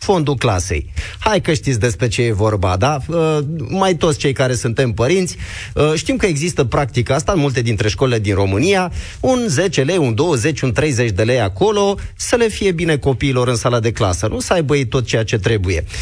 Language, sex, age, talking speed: Romanian, male, 30-49, 205 wpm